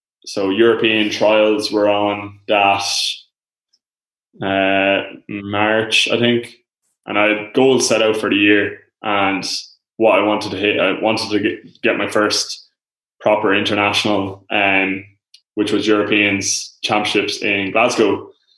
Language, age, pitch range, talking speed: English, 20-39, 100-110 Hz, 130 wpm